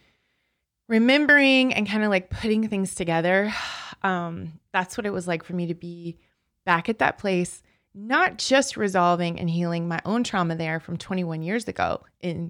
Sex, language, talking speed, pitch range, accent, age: female, English, 175 wpm, 170-220 Hz, American, 20-39